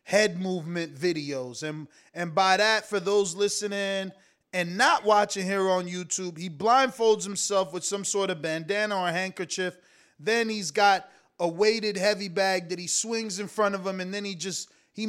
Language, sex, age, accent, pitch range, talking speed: English, male, 30-49, American, 185-225 Hz, 185 wpm